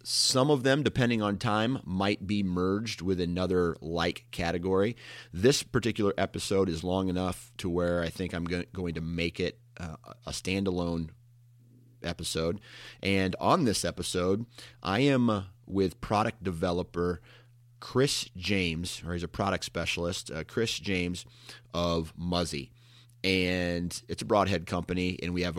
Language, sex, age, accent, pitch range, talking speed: English, male, 30-49, American, 85-115 Hz, 145 wpm